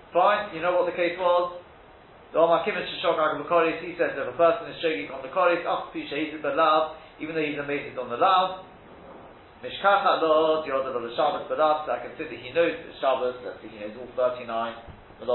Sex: male